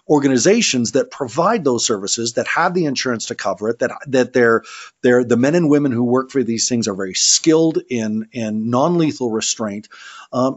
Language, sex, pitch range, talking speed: English, male, 115-140 Hz, 195 wpm